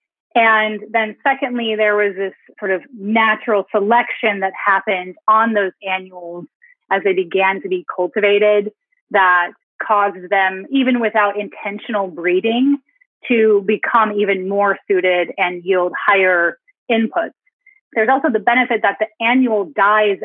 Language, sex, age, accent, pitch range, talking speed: English, female, 30-49, American, 190-225 Hz, 135 wpm